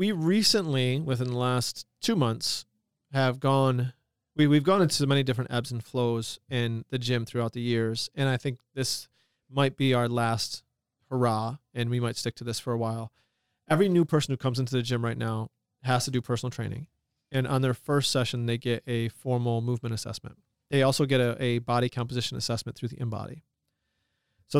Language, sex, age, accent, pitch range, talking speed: English, male, 30-49, American, 120-140 Hz, 195 wpm